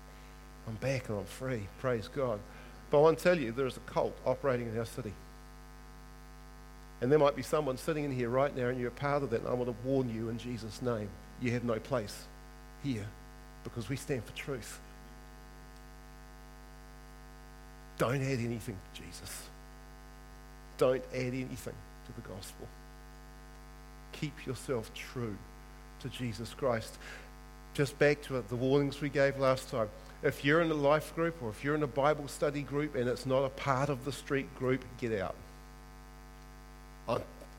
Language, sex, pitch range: English, male, 85-140 Hz